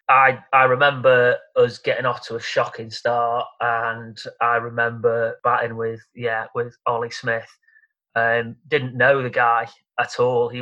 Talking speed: 155 wpm